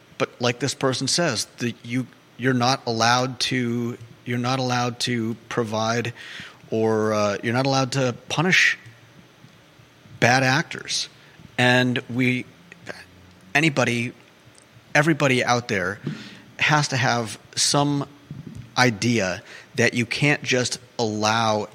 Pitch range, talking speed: 115-135 Hz, 115 wpm